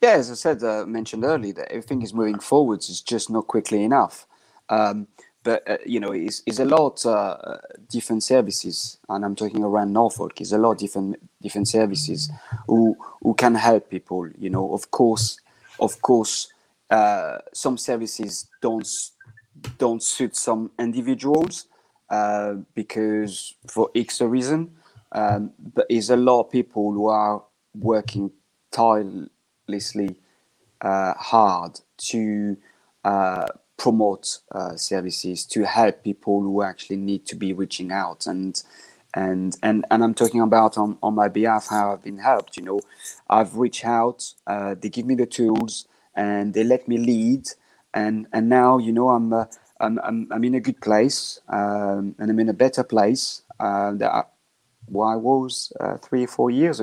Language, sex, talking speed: English, male, 165 wpm